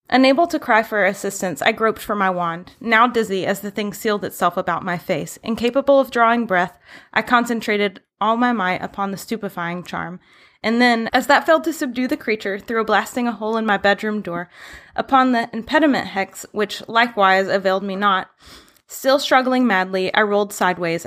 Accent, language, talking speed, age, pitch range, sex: American, English, 190 wpm, 20-39, 185-230 Hz, female